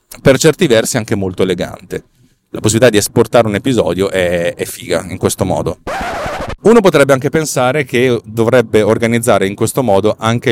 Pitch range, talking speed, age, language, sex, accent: 100-120 Hz, 165 wpm, 30-49, Italian, male, native